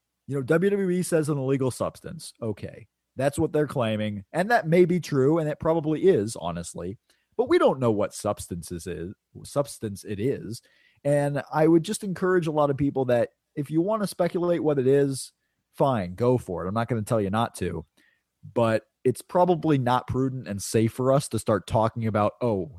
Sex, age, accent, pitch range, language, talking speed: male, 30-49, American, 115-175 Hz, English, 195 wpm